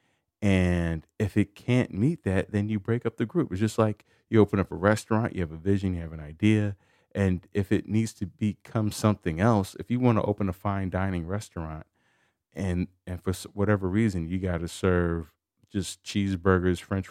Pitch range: 85-115 Hz